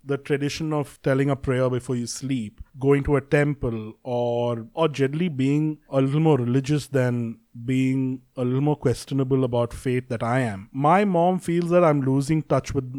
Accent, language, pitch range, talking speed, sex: Indian, English, 130-170 Hz, 185 wpm, male